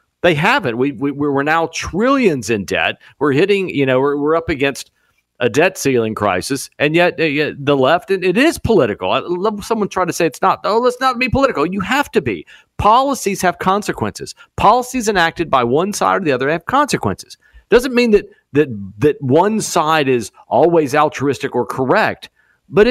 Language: English